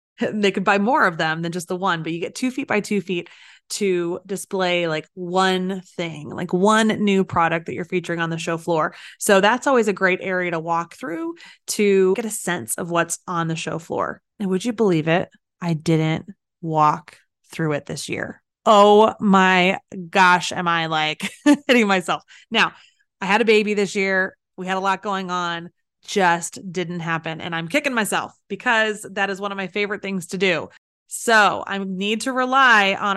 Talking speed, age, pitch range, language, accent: 195 wpm, 20-39, 175-210 Hz, English, American